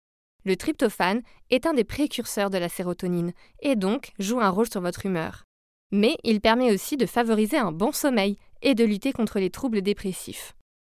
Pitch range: 190-245 Hz